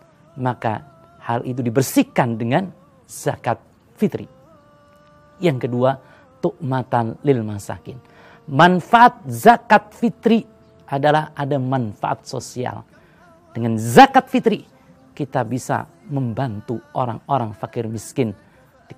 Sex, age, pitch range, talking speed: male, 40-59, 115-160 Hz, 90 wpm